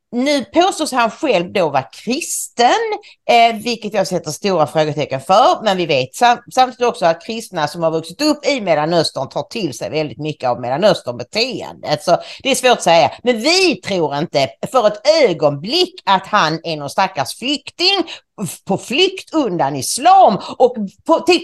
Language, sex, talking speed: English, female, 170 wpm